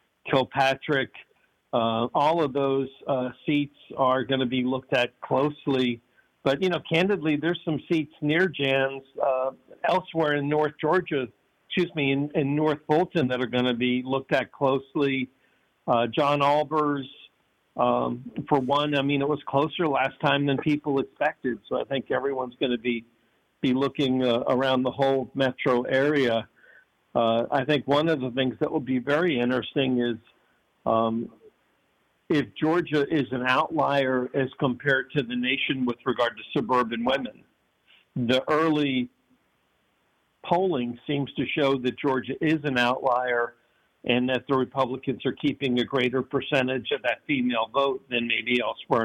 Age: 50-69